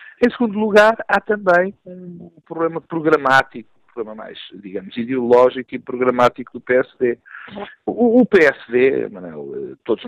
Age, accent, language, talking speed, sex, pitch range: 50-69, Portuguese, Portuguese, 135 wpm, male, 140-220 Hz